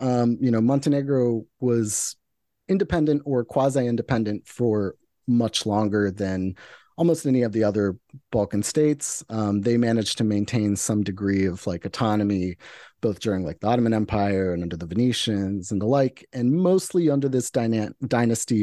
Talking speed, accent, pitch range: 160 wpm, American, 105-130 Hz